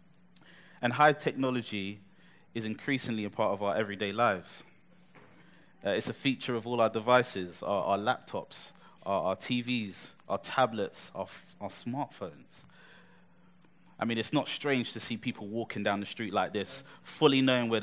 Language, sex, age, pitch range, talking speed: English, male, 20-39, 110-145 Hz, 160 wpm